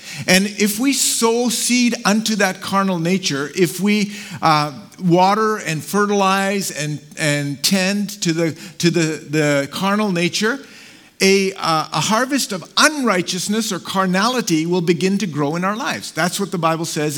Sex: male